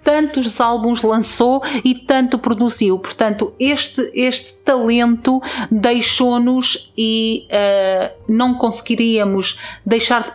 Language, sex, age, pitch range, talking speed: Portuguese, female, 40-59, 205-250 Hz, 100 wpm